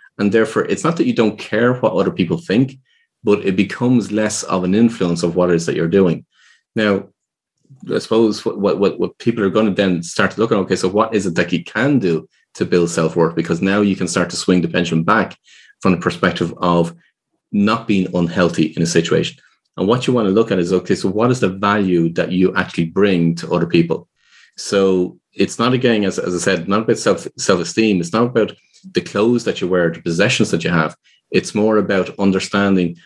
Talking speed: 225 wpm